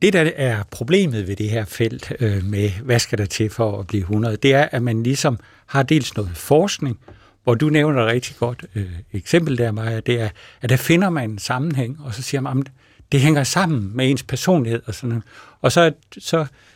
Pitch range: 110-160 Hz